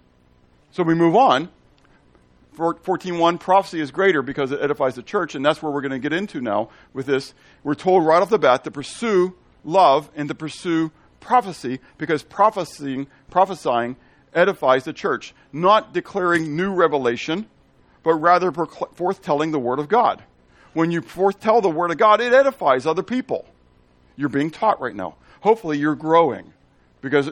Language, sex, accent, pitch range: English, male, American, 125-170 Hz